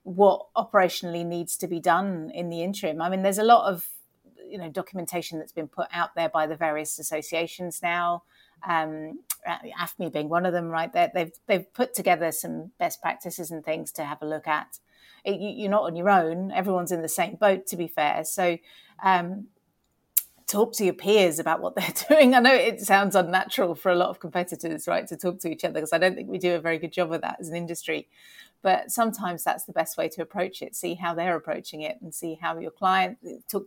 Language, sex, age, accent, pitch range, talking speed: English, female, 30-49, British, 165-195 Hz, 225 wpm